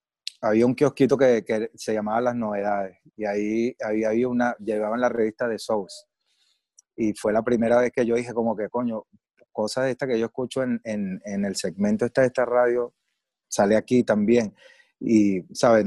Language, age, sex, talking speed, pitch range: Spanish, 30-49, male, 185 wpm, 105-120 Hz